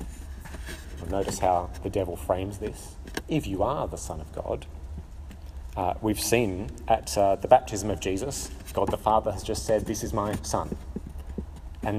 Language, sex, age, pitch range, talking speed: English, male, 30-49, 75-110 Hz, 165 wpm